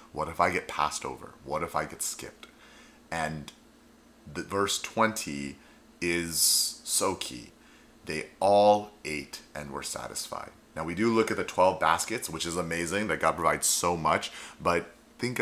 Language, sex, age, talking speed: English, male, 30-49, 165 wpm